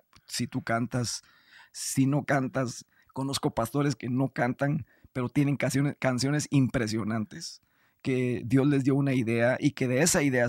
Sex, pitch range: male, 120-165 Hz